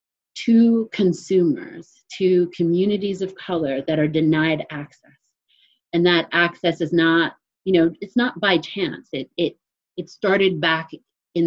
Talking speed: 140 wpm